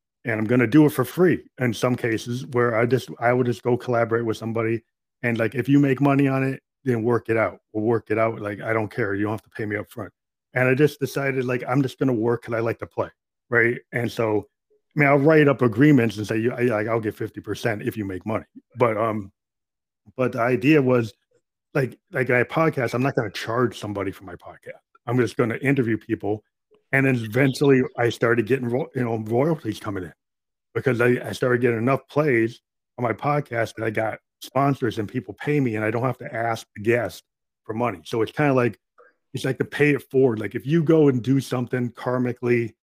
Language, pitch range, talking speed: English, 110-130 Hz, 230 wpm